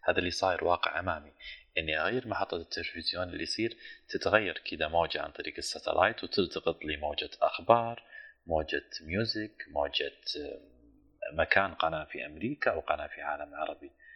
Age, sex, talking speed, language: 30-49, male, 140 wpm, Arabic